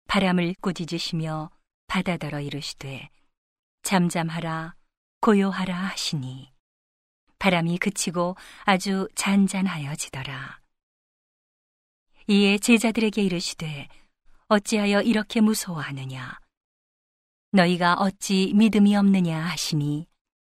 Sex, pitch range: female, 170-205 Hz